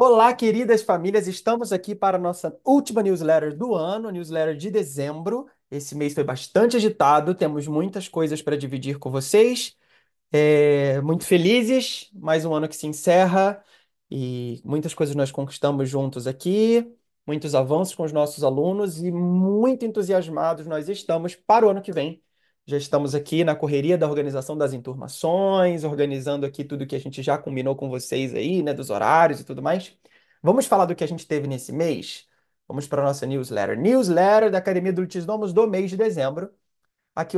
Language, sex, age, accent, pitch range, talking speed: Portuguese, male, 20-39, Brazilian, 150-205 Hz, 175 wpm